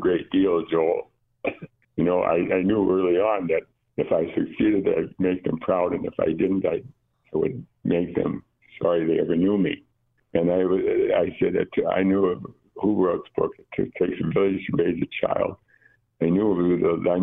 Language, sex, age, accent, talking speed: English, male, 60-79, American, 180 wpm